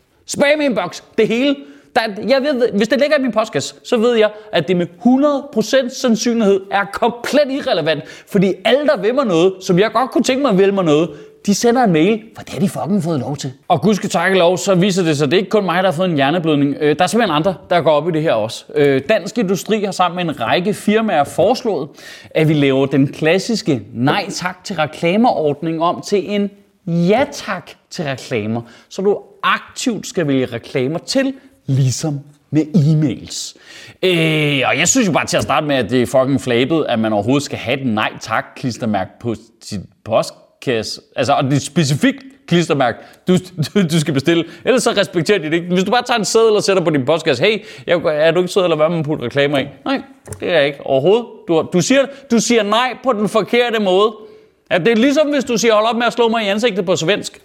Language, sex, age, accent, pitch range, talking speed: Danish, male, 30-49, native, 145-220 Hz, 220 wpm